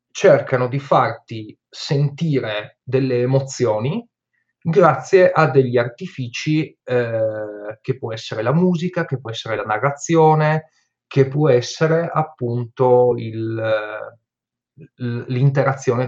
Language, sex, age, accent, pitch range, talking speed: Italian, male, 30-49, native, 120-155 Hz, 100 wpm